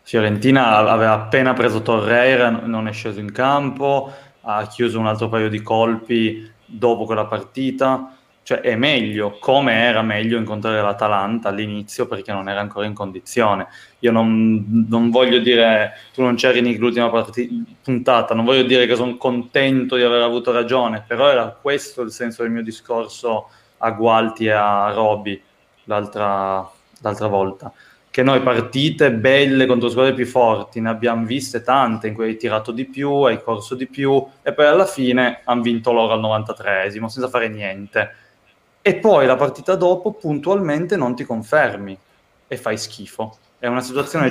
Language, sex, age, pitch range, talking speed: Italian, male, 20-39, 110-130 Hz, 160 wpm